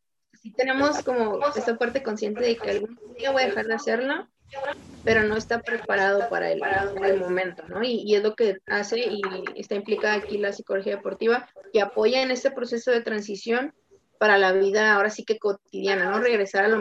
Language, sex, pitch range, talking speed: Spanish, female, 200-245 Hz, 195 wpm